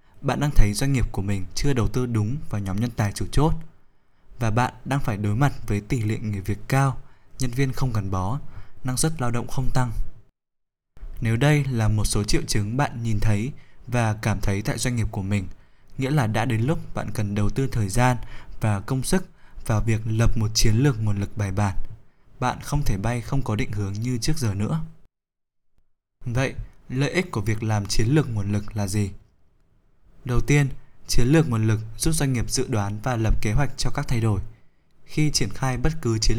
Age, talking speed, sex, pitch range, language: 20-39, 215 wpm, male, 105-135 Hz, Vietnamese